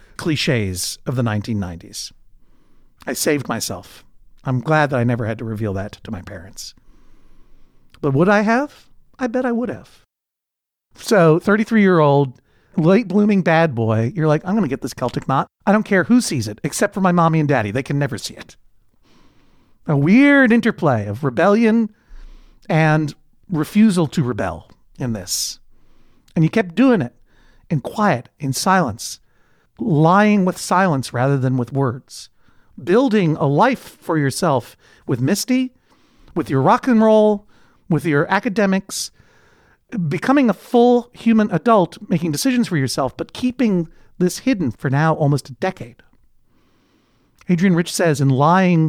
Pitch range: 130-195 Hz